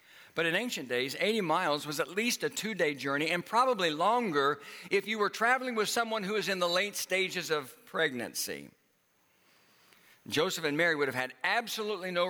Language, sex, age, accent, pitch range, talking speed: English, male, 60-79, American, 130-190 Hz, 180 wpm